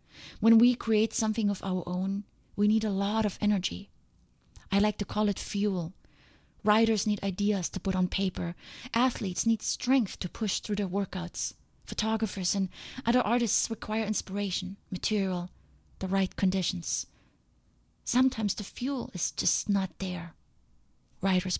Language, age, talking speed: English, 30-49, 145 wpm